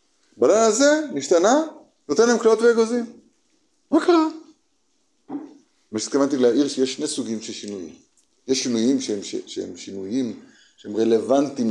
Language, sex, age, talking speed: Hebrew, male, 50-69, 120 wpm